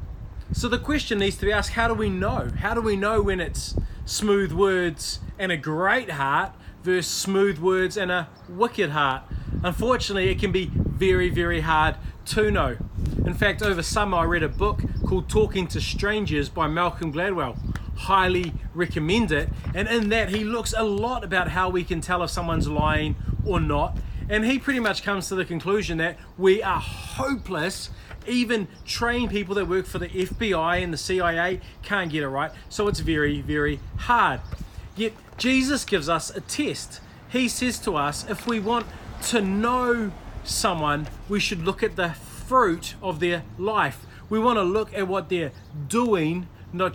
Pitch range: 165-210 Hz